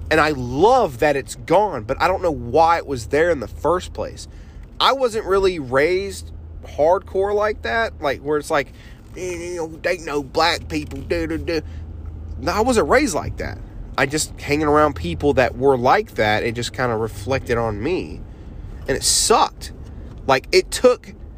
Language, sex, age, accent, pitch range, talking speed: English, male, 30-49, American, 110-155 Hz, 180 wpm